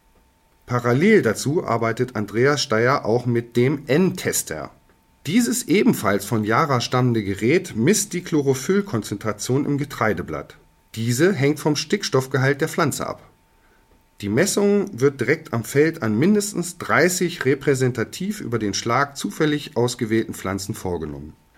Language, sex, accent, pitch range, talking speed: German, male, German, 110-160 Hz, 120 wpm